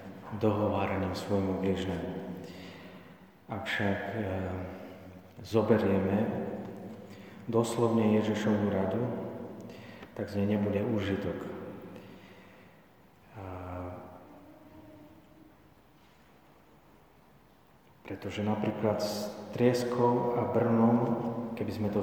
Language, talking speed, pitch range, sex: Slovak, 70 wpm, 100-110 Hz, male